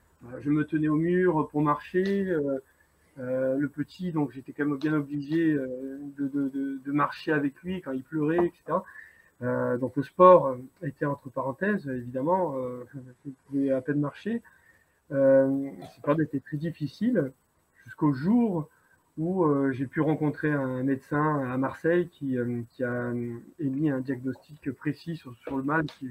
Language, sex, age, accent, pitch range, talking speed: French, male, 30-49, French, 130-150 Hz, 155 wpm